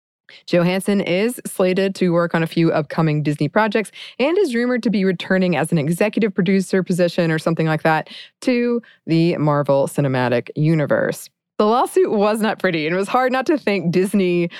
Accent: American